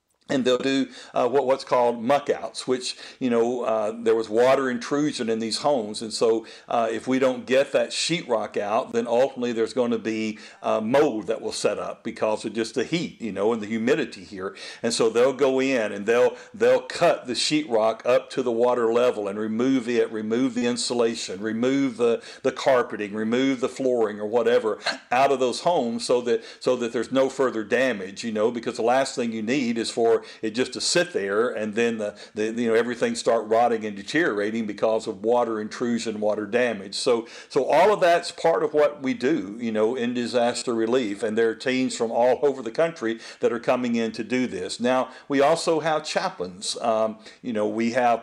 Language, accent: English, American